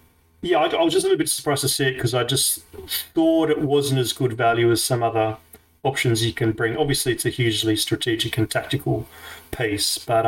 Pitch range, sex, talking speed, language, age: 115-140 Hz, male, 215 wpm, English, 30-49